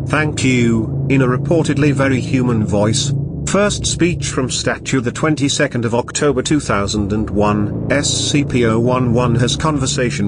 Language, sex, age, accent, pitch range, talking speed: English, male, 40-59, British, 115-140 Hz, 115 wpm